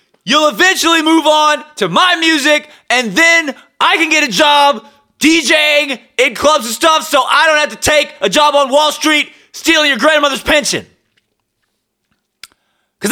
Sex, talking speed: male, 160 wpm